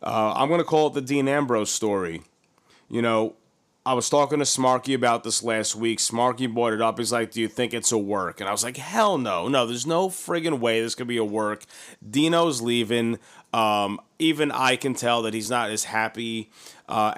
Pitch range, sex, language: 110-125 Hz, male, English